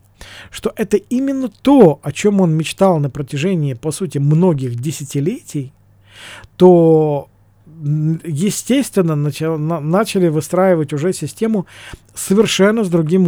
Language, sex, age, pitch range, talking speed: Russian, male, 40-59, 140-185 Hz, 105 wpm